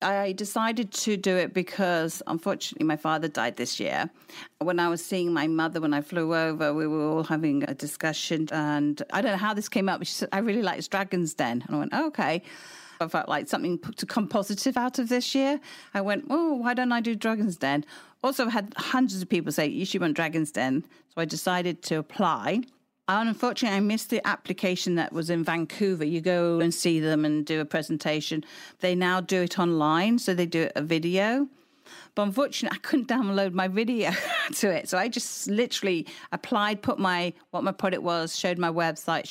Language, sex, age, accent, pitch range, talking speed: English, female, 50-69, British, 165-210 Hz, 210 wpm